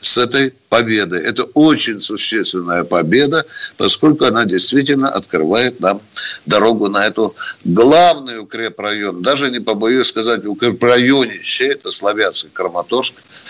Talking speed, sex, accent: 110 wpm, male, native